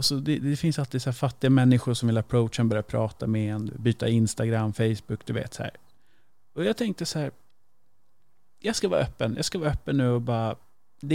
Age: 30-49